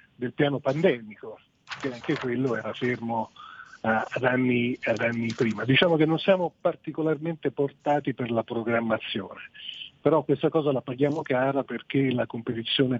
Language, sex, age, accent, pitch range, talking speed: Italian, male, 40-59, native, 120-145 Hz, 140 wpm